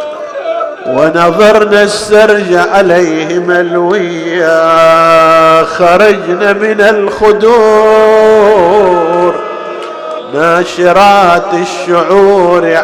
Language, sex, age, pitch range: Arabic, male, 50-69, 190-215 Hz